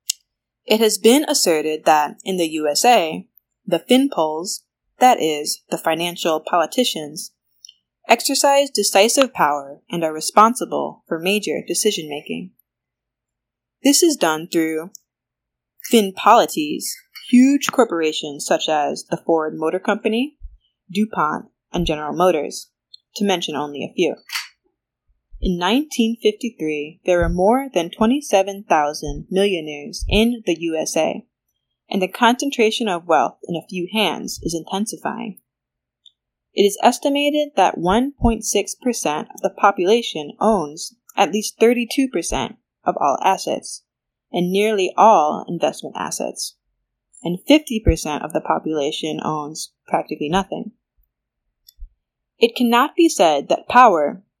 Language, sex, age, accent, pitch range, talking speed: English, female, 20-39, American, 160-230 Hz, 115 wpm